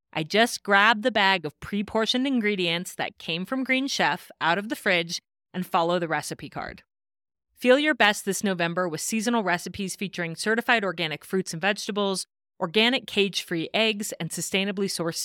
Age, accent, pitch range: 30-49, American, 165-215 Hz